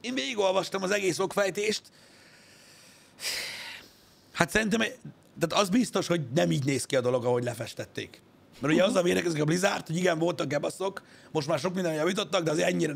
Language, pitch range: Hungarian, 140-190 Hz